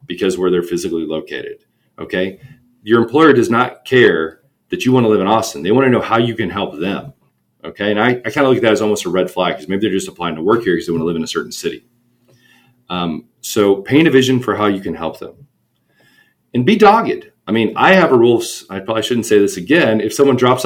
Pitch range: 90-125 Hz